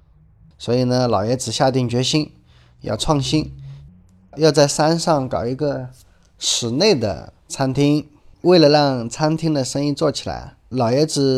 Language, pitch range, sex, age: Chinese, 95-145 Hz, male, 20-39